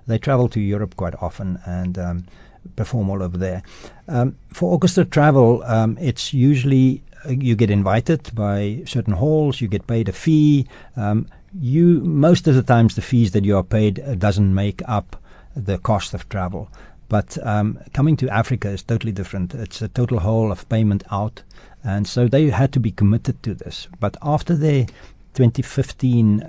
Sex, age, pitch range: male, 60-79, 100-125 Hz